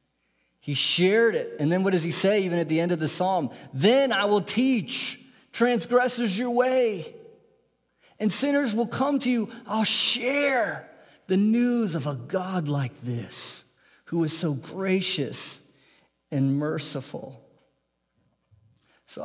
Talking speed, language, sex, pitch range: 140 wpm, English, male, 125-190 Hz